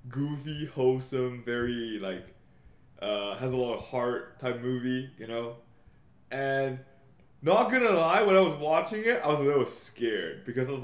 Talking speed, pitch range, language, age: 170 wpm, 110-140 Hz, English, 20-39